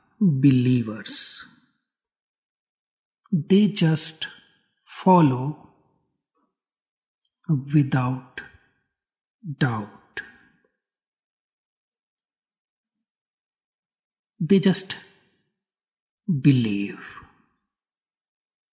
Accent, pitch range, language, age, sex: native, 135-175 Hz, Hindi, 60-79, male